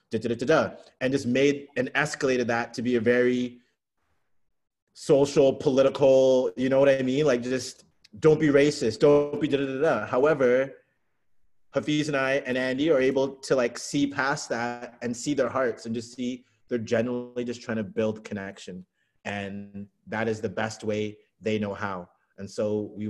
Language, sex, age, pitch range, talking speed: English, male, 30-49, 110-130 Hz, 165 wpm